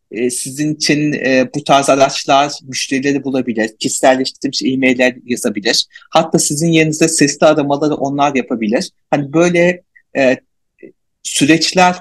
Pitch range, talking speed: 150-180 Hz, 110 wpm